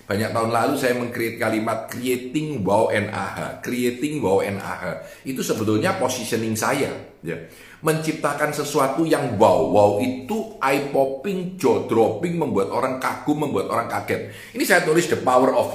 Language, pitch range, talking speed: Indonesian, 105-145 Hz, 150 wpm